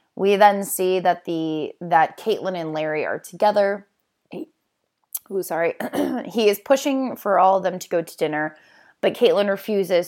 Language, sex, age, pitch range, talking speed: English, female, 20-39, 160-195 Hz, 160 wpm